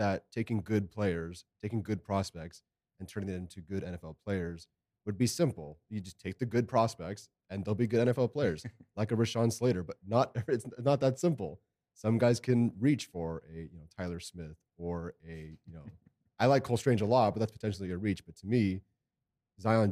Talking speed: 205 wpm